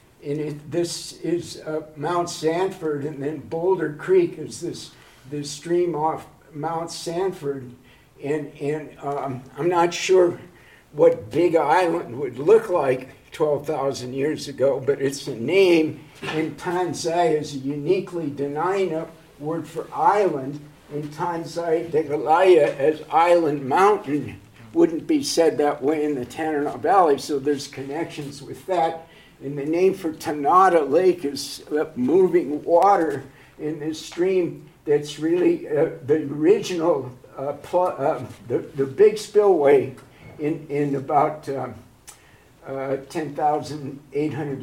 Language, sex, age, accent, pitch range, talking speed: English, male, 60-79, American, 145-175 Hz, 130 wpm